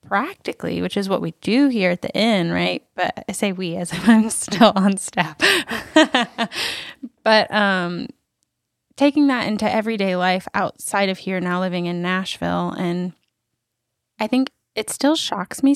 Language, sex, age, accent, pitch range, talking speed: English, female, 10-29, American, 175-225 Hz, 160 wpm